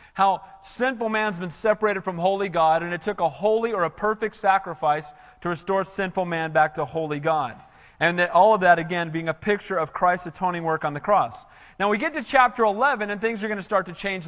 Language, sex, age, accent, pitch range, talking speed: English, male, 40-59, American, 170-225 Hz, 230 wpm